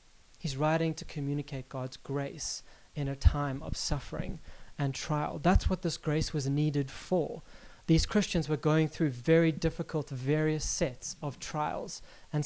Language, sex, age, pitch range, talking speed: English, male, 30-49, 140-165 Hz, 155 wpm